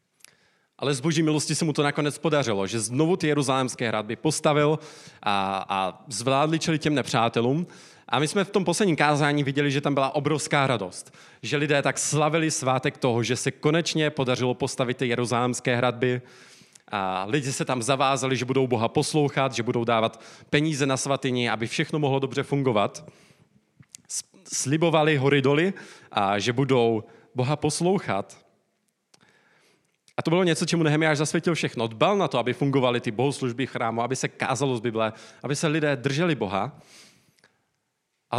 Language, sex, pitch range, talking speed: Czech, male, 120-150 Hz, 160 wpm